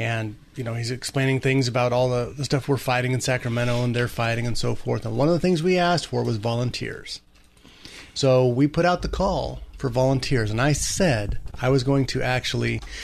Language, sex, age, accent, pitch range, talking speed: English, male, 30-49, American, 120-145 Hz, 215 wpm